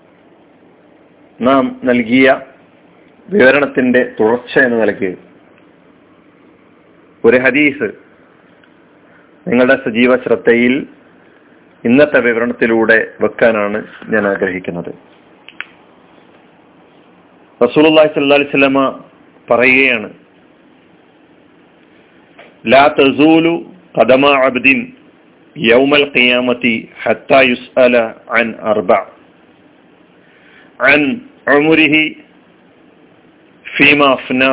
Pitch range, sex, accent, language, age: 120-150 Hz, male, native, Malayalam, 40-59